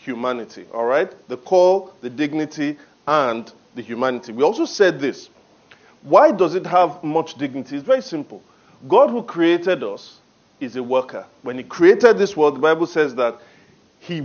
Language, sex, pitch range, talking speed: English, male, 150-215 Hz, 170 wpm